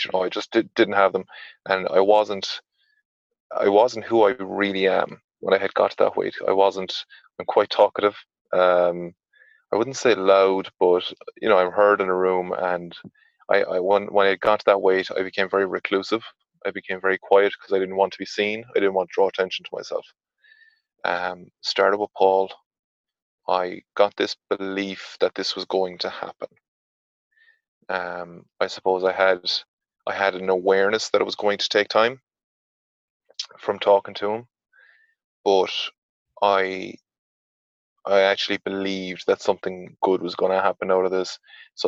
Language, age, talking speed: English, 20-39, 175 wpm